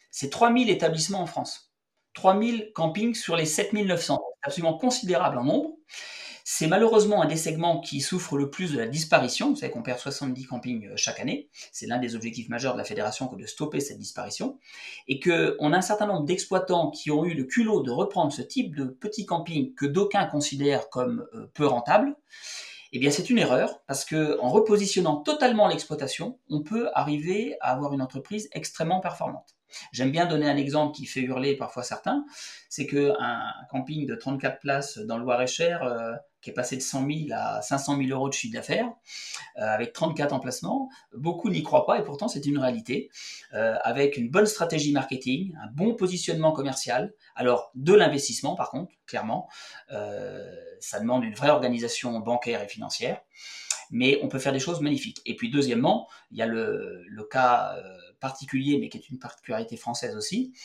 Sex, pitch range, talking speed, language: male, 130-195 Hz, 190 wpm, French